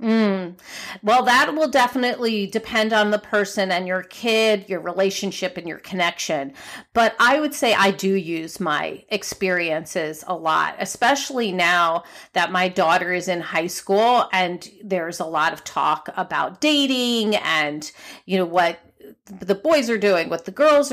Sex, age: female, 40-59